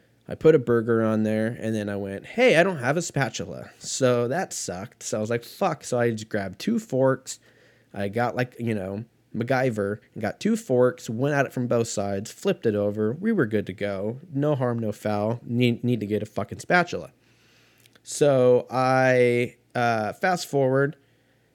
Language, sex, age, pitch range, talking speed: English, male, 20-39, 110-135 Hz, 190 wpm